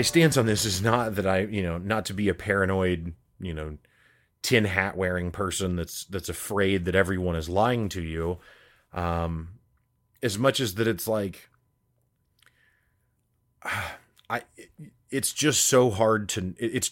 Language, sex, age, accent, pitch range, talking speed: English, male, 30-49, American, 90-115 Hz, 155 wpm